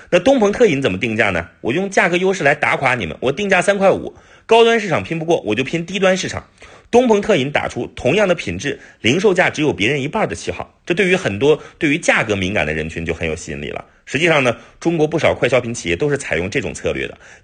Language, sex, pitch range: Chinese, male, 125-205 Hz